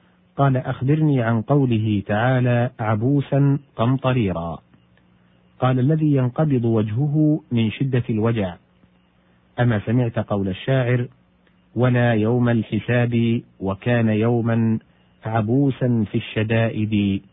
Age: 40-59